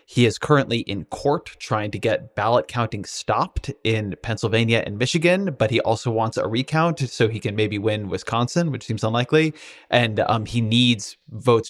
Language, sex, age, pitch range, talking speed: English, male, 20-39, 110-135 Hz, 180 wpm